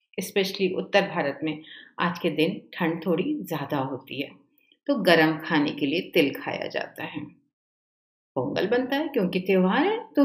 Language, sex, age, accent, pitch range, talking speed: Hindi, female, 50-69, native, 165-270 Hz, 165 wpm